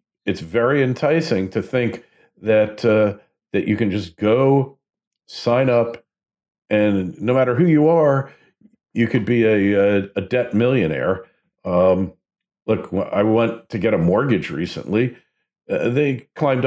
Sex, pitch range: male, 95-125 Hz